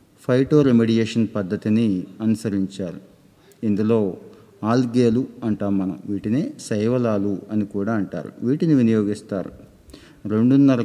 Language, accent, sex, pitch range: Telugu, native, male, 105-120 Hz